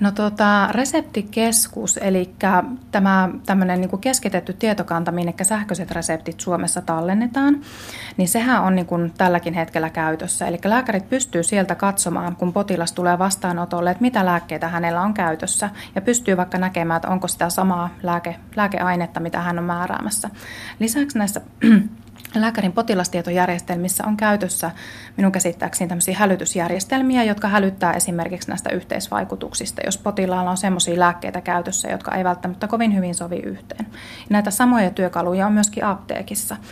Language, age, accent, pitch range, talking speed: Finnish, 30-49, native, 175-205 Hz, 130 wpm